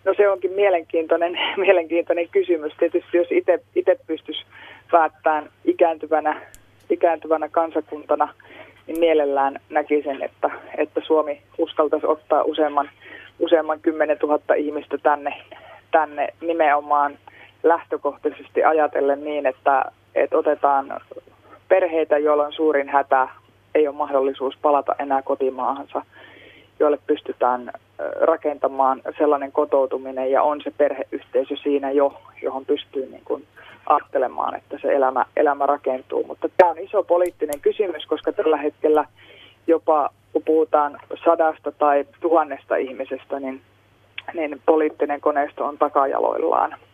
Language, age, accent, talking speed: Finnish, 20-39, native, 115 wpm